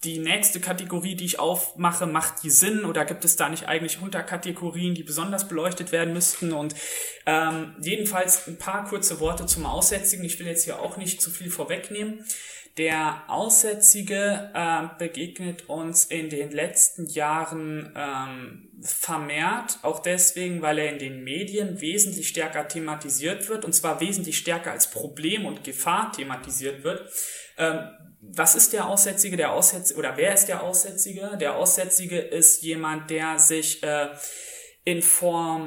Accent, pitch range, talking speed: German, 155-195 Hz, 155 wpm